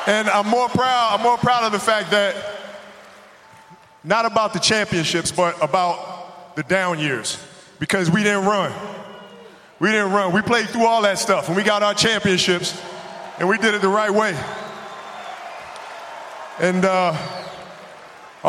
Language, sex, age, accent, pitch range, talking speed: Italian, male, 20-39, American, 185-215 Hz, 155 wpm